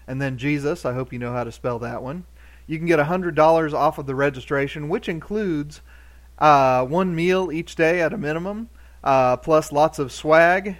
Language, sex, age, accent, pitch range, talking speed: English, male, 40-59, American, 135-170 Hz, 205 wpm